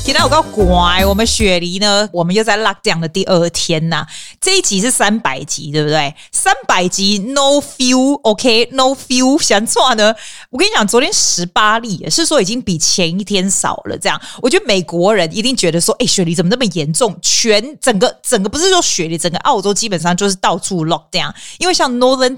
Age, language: 20-39, Chinese